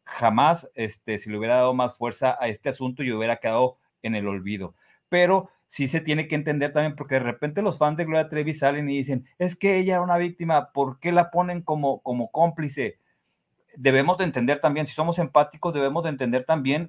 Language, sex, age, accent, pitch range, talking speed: Spanish, male, 40-59, Mexican, 120-155 Hz, 215 wpm